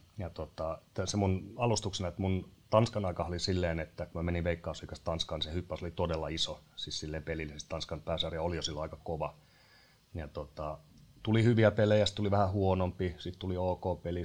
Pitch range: 80-100 Hz